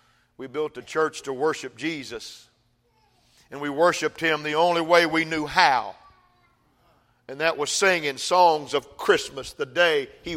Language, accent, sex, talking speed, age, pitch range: English, American, male, 155 wpm, 50-69, 170-250 Hz